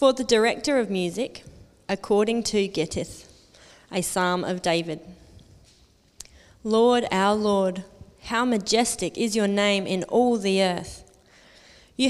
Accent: Australian